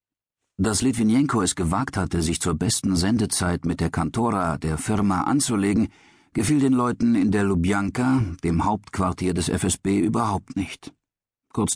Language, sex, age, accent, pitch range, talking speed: German, male, 50-69, German, 90-115 Hz, 145 wpm